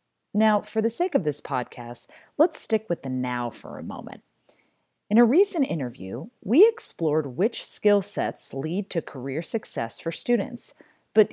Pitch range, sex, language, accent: 145-220 Hz, female, English, American